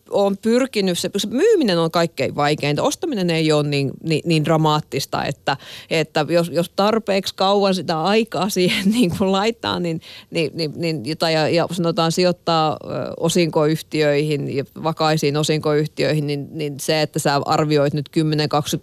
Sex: female